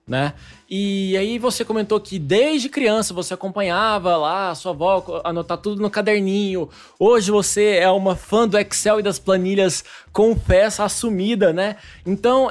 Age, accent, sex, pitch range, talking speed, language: 20-39, Brazilian, male, 170-215 Hz, 160 wpm, Portuguese